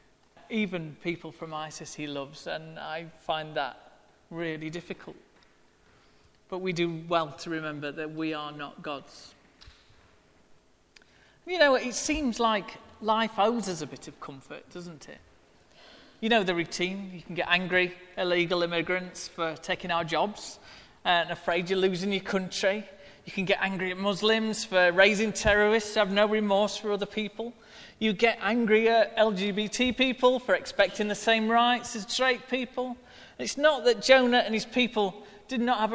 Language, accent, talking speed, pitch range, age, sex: English, British, 160 wpm, 170-215 Hz, 40-59, male